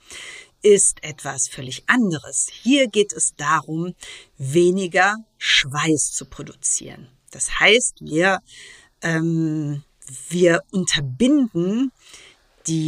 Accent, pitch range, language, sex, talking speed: German, 150-215 Hz, German, female, 90 wpm